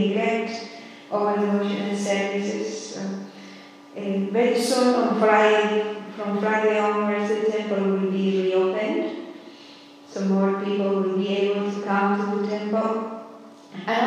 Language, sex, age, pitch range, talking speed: English, female, 50-69, 195-220 Hz, 110 wpm